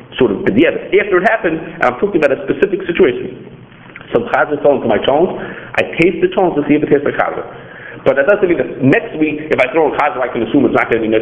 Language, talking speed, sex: English, 275 wpm, male